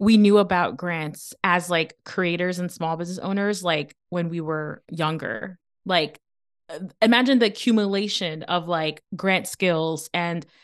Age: 20-39